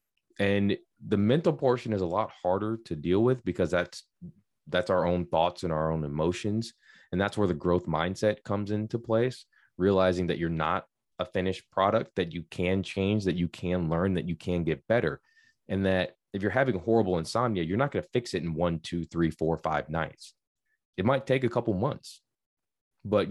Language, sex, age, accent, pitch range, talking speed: English, male, 20-39, American, 85-105 Hz, 195 wpm